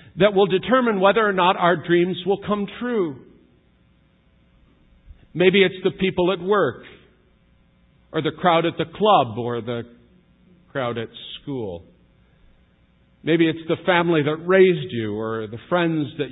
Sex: male